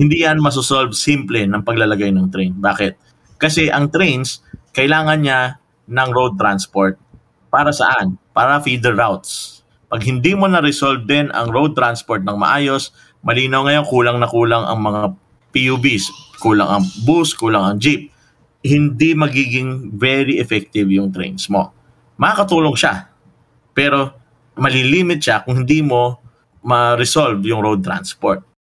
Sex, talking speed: male, 135 wpm